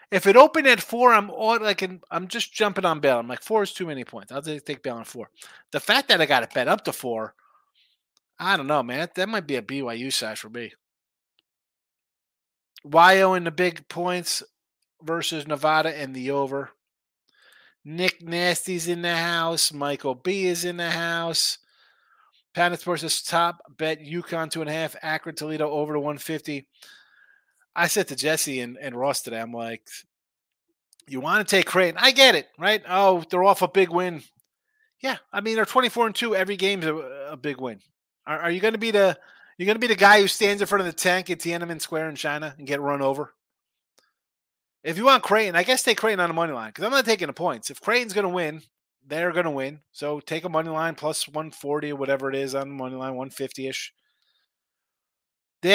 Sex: male